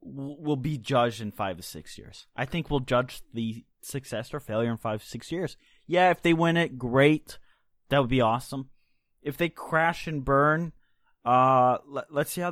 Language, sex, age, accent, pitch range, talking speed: English, male, 20-39, American, 115-160 Hz, 190 wpm